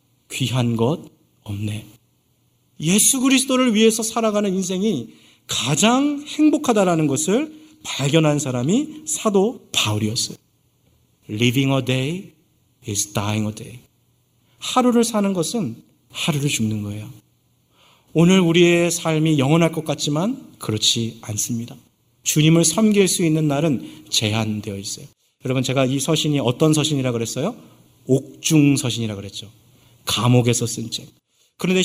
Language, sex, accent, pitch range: Korean, male, native, 125-180 Hz